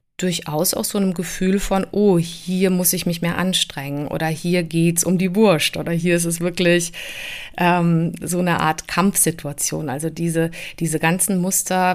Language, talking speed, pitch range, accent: German, 170 wpm, 165-190 Hz, German